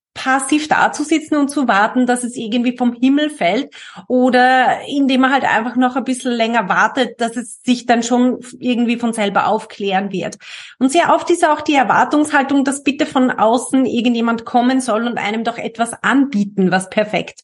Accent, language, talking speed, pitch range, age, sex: German, German, 180 wpm, 210-275 Hz, 30-49, female